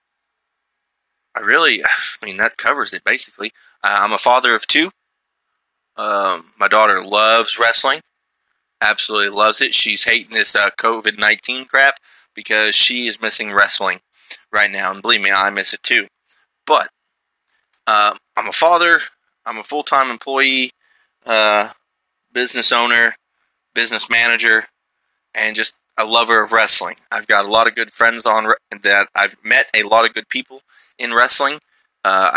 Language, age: English, 20-39